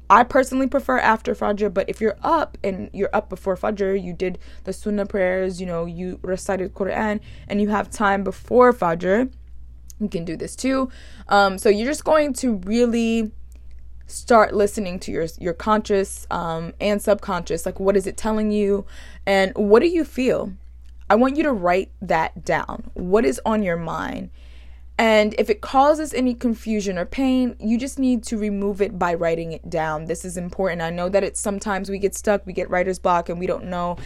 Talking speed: 195 wpm